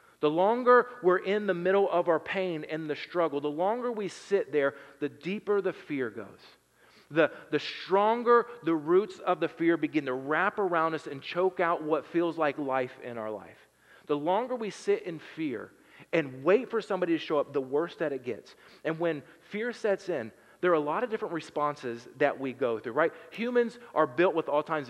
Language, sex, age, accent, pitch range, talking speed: English, male, 40-59, American, 155-205 Hz, 205 wpm